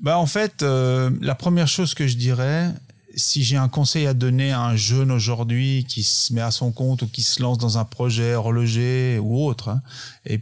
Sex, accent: male, French